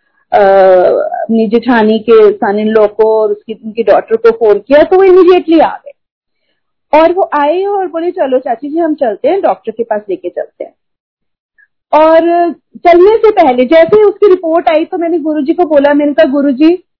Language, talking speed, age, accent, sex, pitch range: Hindi, 160 wpm, 40-59, native, female, 255-345 Hz